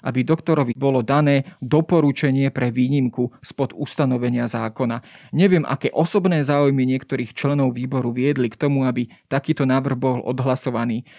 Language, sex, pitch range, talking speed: Slovak, male, 130-155 Hz, 135 wpm